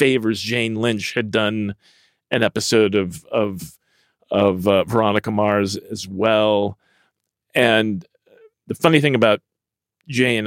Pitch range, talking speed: 105-135 Hz, 120 wpm